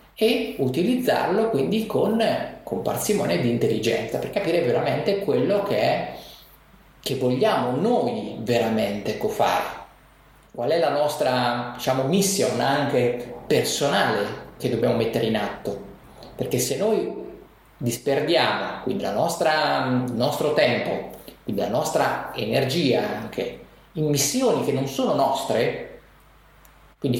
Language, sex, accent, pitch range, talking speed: Italian, male, native, 120-185 Hz, 120 wpm